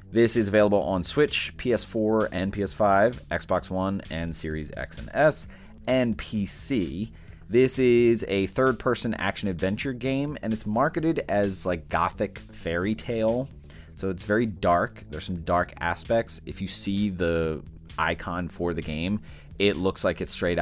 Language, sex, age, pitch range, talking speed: English, male, 30-49, 85-110 Hz, 155 wpm